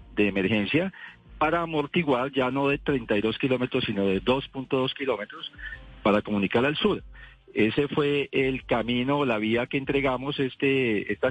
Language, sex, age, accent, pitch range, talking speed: Spanish, male, 40-59, Colombian, 110-145 Hz, 145 wpm